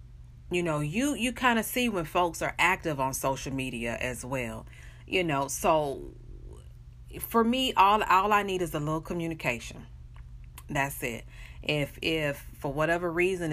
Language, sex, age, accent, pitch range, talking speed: English, female, 40-59, American, 130-180 Hz, 160 wpm